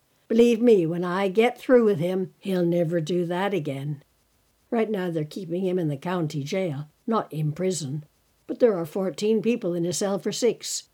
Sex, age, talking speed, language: female, 60-79, 190 wpm, English